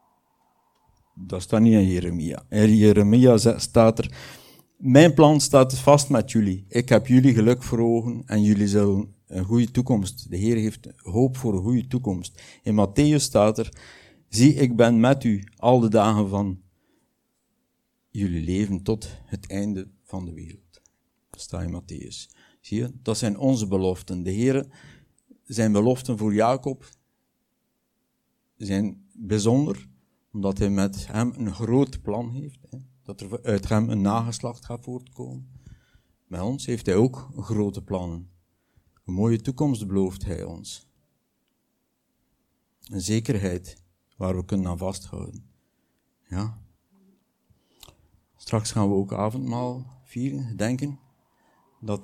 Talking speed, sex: 135 wpm, male